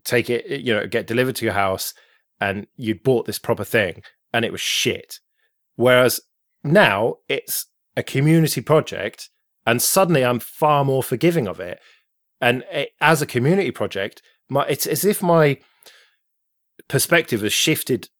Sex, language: male, English